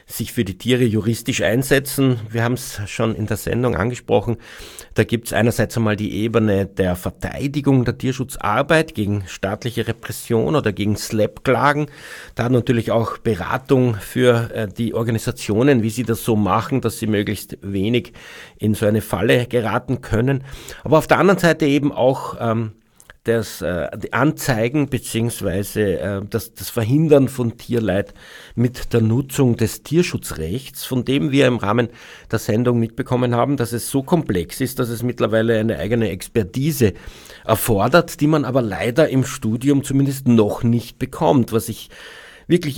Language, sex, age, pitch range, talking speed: German, male, 50-69, 110-130 Hz, 155 wpm